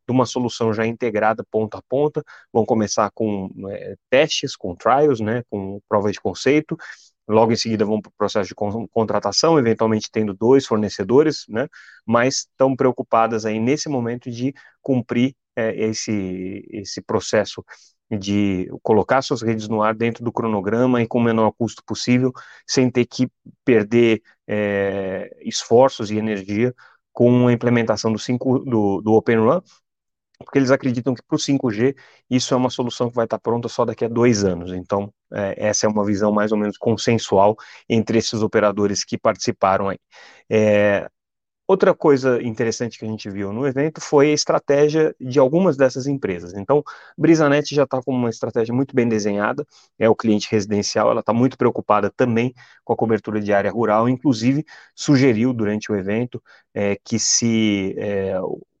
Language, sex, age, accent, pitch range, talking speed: Portuguese, male, 30-49, Brazilian, 105-130 Hz, 160 wpm